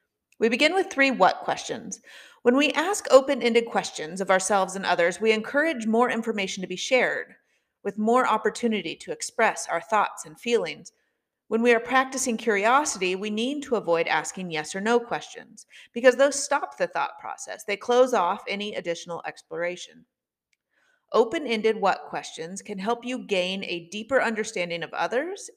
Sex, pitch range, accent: female, 190-260 Hz, American